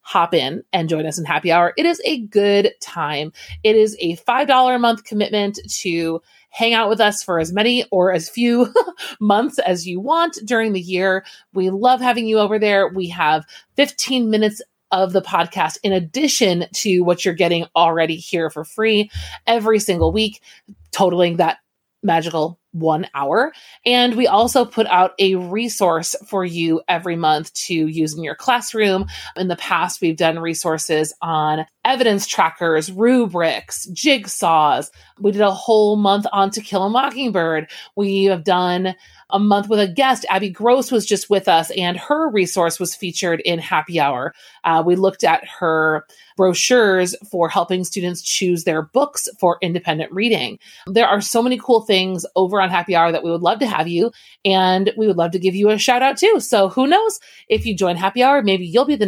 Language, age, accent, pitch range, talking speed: English, 30-49, American, 170-225 Hz, 185 wpm